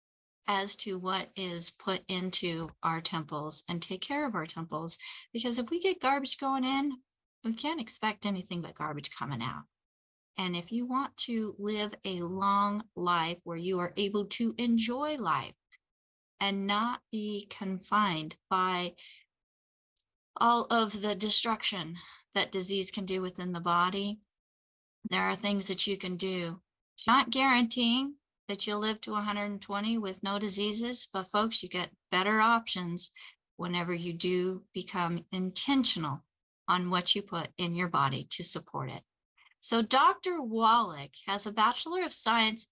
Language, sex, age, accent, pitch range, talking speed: English, female, 30-49, American, 175-230 Hz, 150 wpm